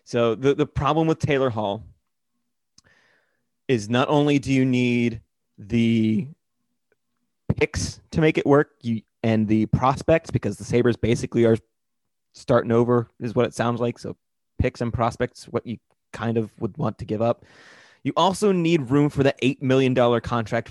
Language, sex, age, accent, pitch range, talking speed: English, male, 30-49, American, 115-140 Hz, 165 wpm